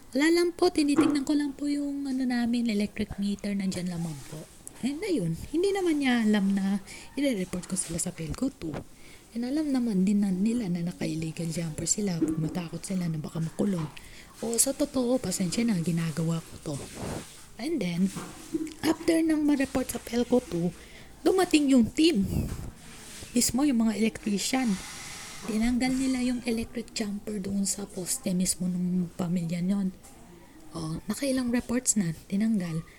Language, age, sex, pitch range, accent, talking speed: Filipino, 20-39, female, 175-245 Hz, native, 155 wpm